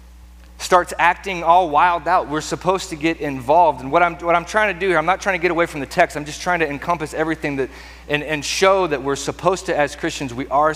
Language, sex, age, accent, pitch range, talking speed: English, male, 30-49, American, 105-150 Hz, 255 wpm